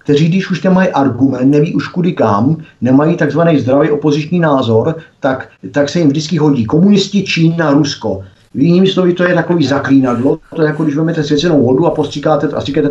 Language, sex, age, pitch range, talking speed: Czech, male, 50-69, 130-155 Hz, 195 wpm